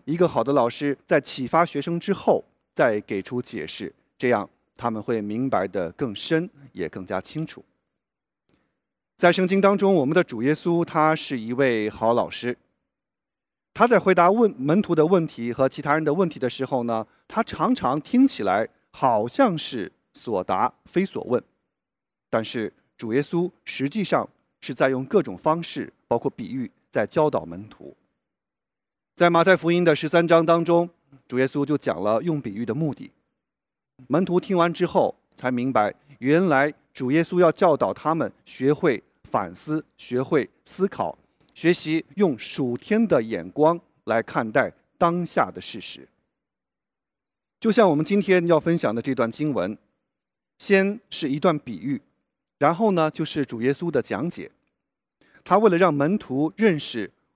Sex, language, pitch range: male, English, 130-175 Hz